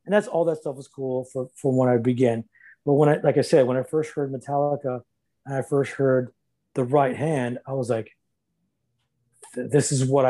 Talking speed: 210 wpm